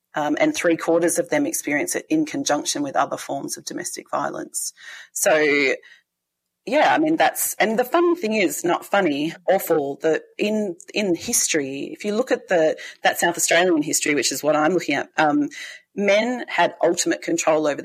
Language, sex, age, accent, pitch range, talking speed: English, female, 30-49, Australian, 165-240 Hz, 180 wpm